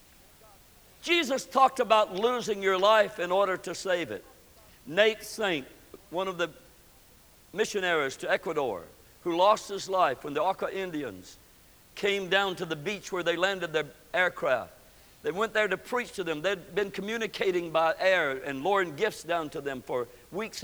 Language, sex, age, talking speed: English, male, 60-79, 165 wpm